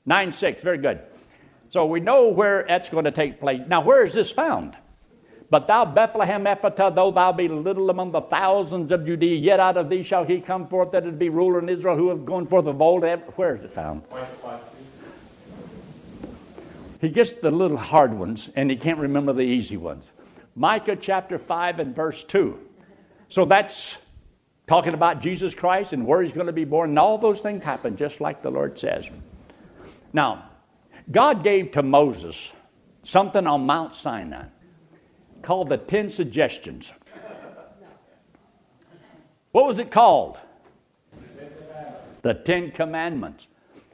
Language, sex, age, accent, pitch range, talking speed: English, male, 60-79, American, 150-195 Hz, 160 wpm